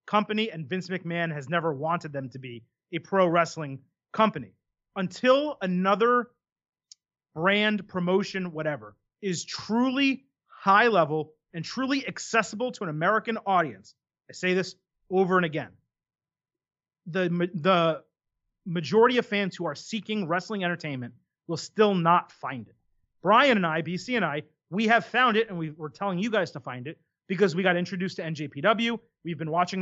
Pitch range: 165-210 Hz